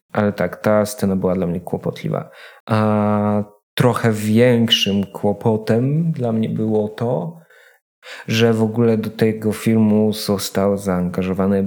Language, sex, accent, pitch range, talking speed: Polish, male, native, 105-115 Hz, 125 wpm